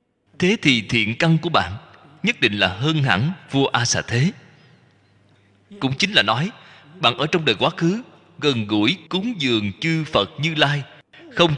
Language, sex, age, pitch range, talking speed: Vietnamese, male, 20-39, 105-170 Hz, 165 wpm